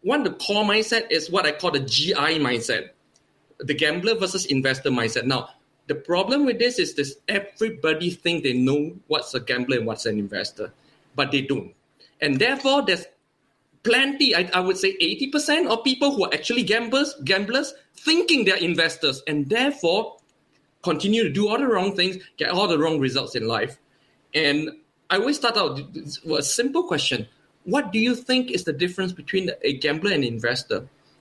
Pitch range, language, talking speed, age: 145-215 Hz, English, 180 wpm, 20-39